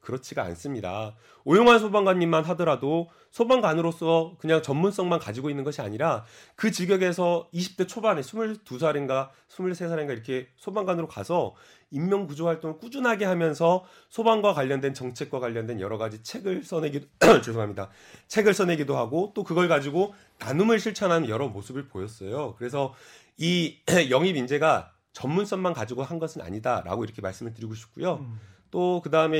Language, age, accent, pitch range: Korean, 30-49, native, 135-185 Hz